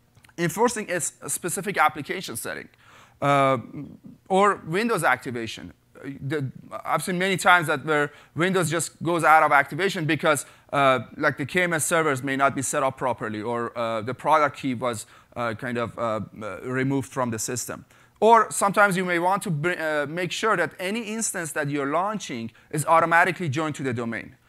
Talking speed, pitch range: 170 wpm, 130-175 Hz